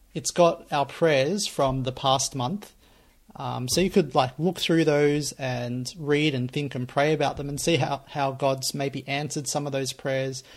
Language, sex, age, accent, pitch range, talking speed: English, male, 30-49, Australian, 125-145 Hz, 200 wpm